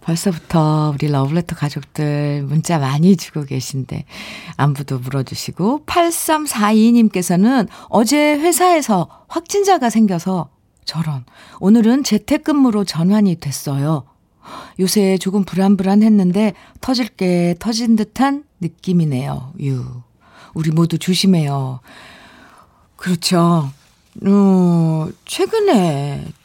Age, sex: 50-69, female